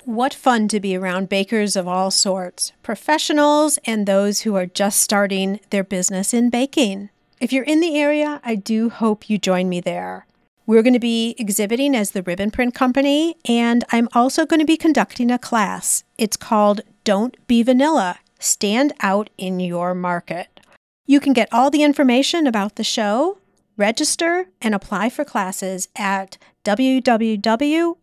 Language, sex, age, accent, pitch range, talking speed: English, female, 40-59, American, 195-260 Hz, 165 wpm